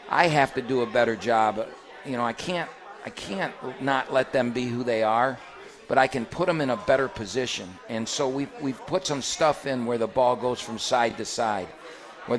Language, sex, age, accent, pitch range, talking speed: English, male, 50-69, American, 115-130 Hz, 225 wpm